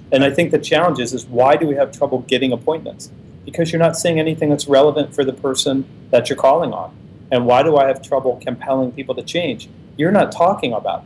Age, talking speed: 40-59, 230 wpm